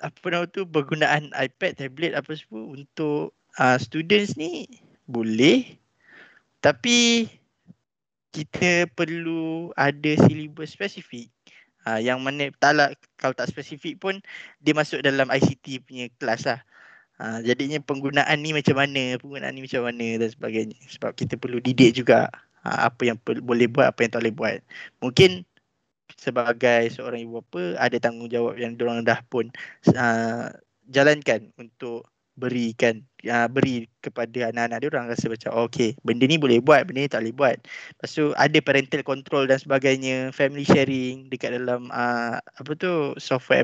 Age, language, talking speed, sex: 20-39, Malay, 155 wpm, male